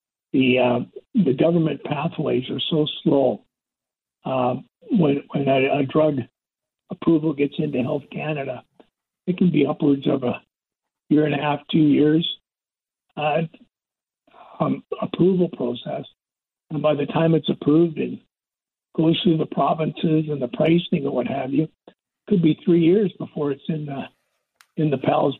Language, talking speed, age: English, 155 wpm, 60-79